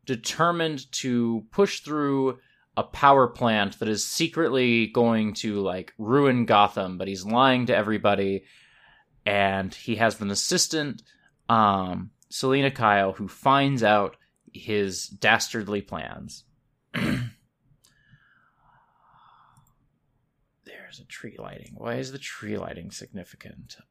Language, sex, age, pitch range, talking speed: English, male, 20-39, 110-145 Hz, 110 wpm